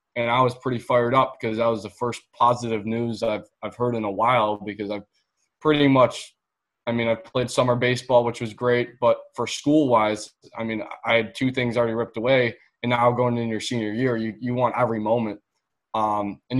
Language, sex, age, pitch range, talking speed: English, male, 20-39, 110-125 Hz, 215 wpm